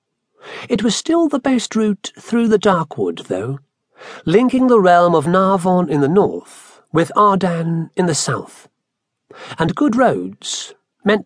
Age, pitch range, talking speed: 50-69, 150-215 Hz, 150 wpm